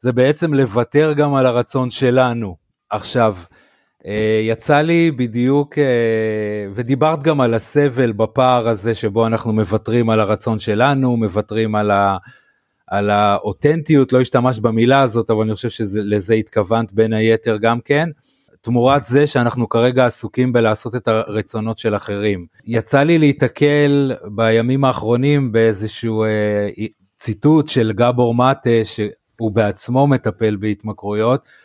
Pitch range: 110-135 Hz